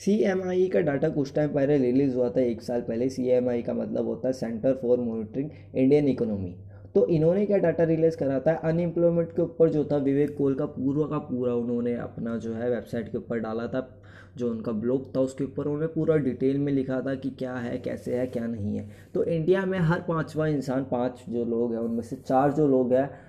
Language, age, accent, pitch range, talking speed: Hindi, 20-39, native, 125-155 Hz, 220 wpm